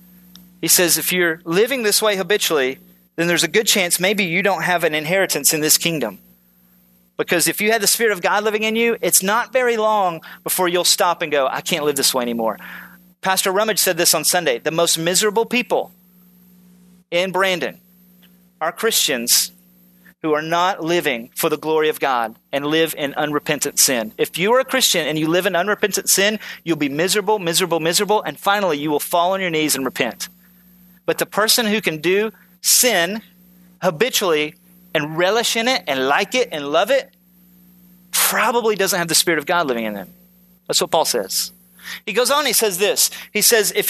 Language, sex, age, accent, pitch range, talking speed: English, male, 30-49, American, 155-210 Hz, 195 wpm